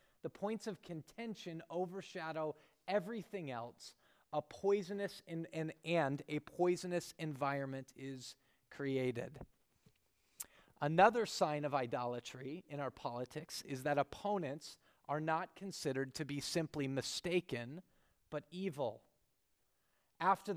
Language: English